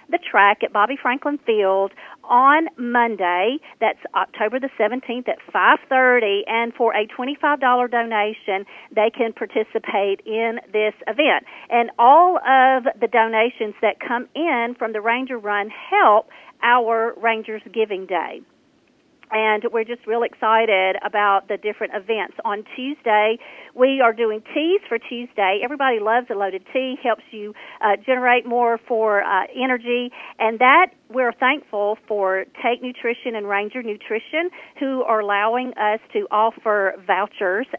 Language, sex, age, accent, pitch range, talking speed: English, female, 40-59, American, 210-260 Hz, 140 wpm